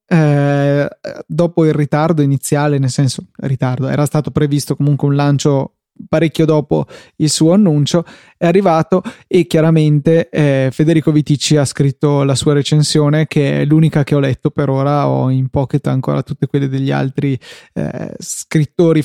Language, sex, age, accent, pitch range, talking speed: Italian, male, 20-39, native, 140-155 Hz, 155 wpm